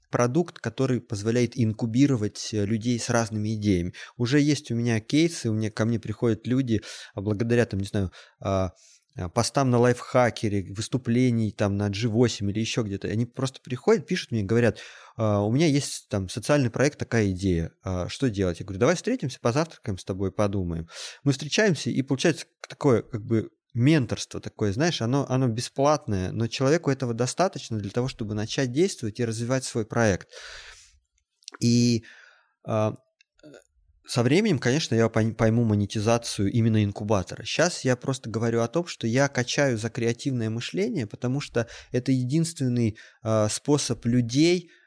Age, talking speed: 20-39, 150 wpm